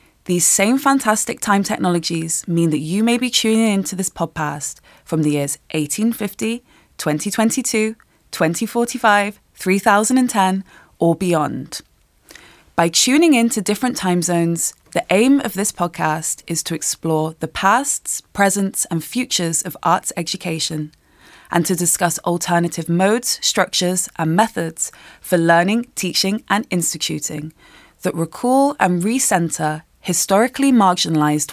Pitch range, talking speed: 165-220 Hz, 120 wpm